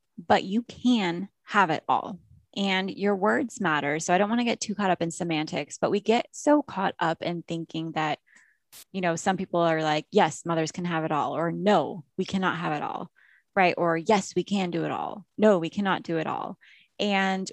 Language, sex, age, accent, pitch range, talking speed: English, female, 20-39, American, 160-195 Hz, 220 wpm